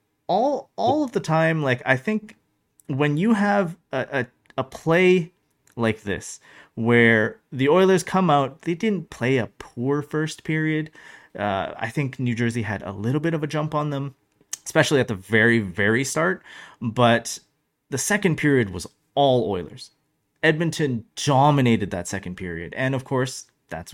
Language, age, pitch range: English, 30-49, 105-145 Hz